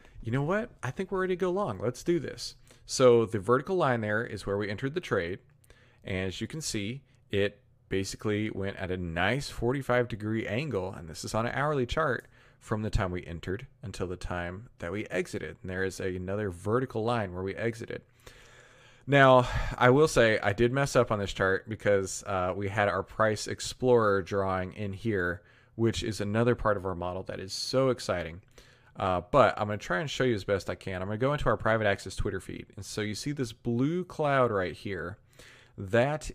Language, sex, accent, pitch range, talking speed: English, male, American, 100-125 Hz, 215 wpm